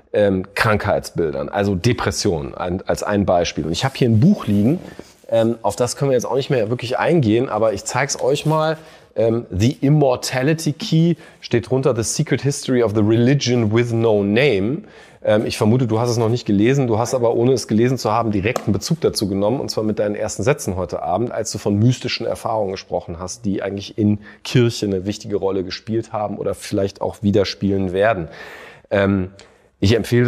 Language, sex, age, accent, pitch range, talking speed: German, male, 30-49, German, 105-130 Hz, 200 wpm